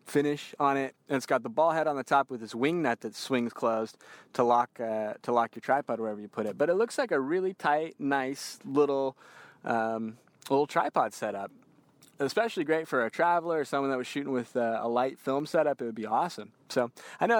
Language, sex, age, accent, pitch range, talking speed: English, male, 20-39, American, 115-150 Hz, 230 wpm